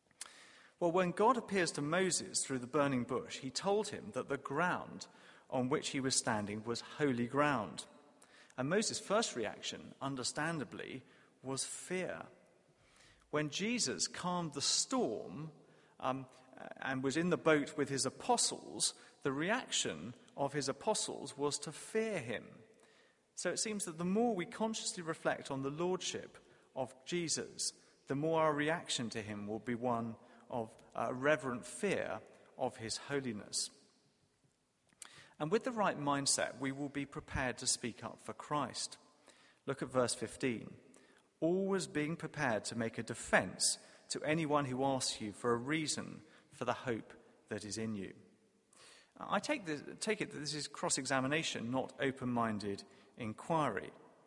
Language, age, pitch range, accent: English, 40-59, 130-175 Hz, British